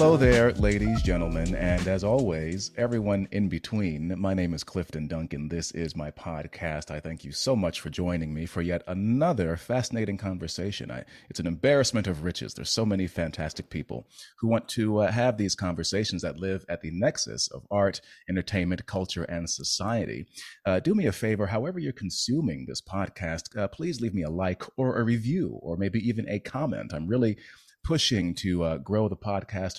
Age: 40-59